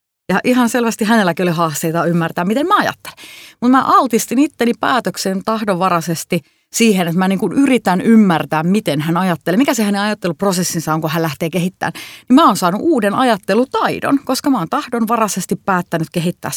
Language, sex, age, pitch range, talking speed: Finnish, female, 30-49, 165-220 Hz, 165 wpm